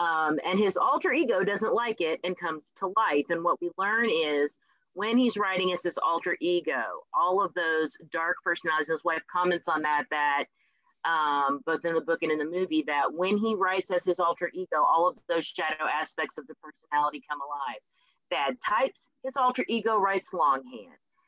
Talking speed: 195 wpm